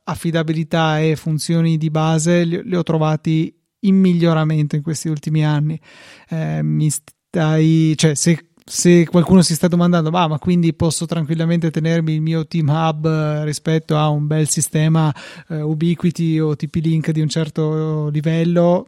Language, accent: Italian, native